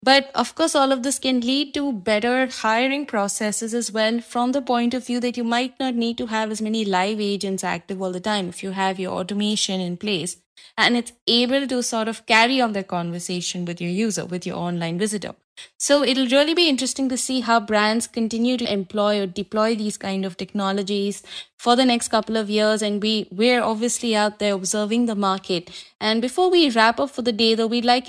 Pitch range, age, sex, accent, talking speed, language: 205-245 Hz, 20-39, female, Indian, 210 wpm, English